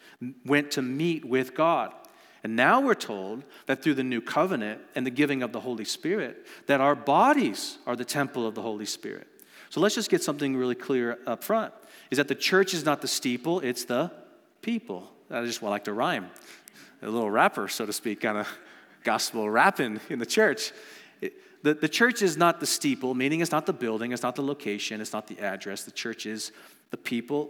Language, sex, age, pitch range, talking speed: English, male, 40-59, 125-170 Hz, 205 wpm